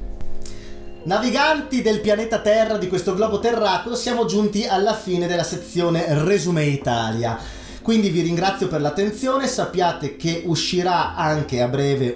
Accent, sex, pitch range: native, male, 125-190 Hz